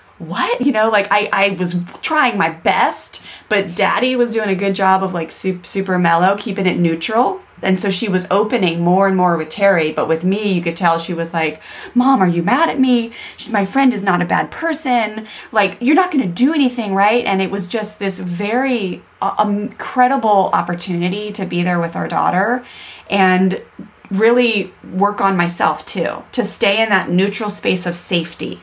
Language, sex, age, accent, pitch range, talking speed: English, female, 30-49, American, 185-245 Hz, 200 wpm